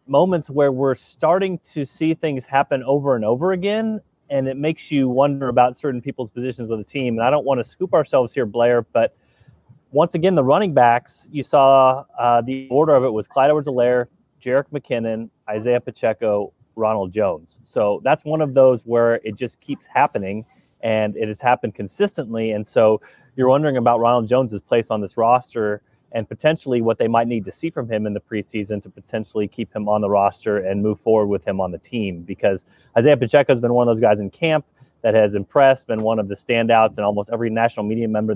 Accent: American